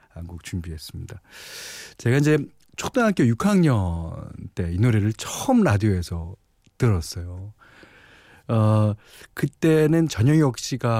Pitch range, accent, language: 95-135 Hz, native, Korean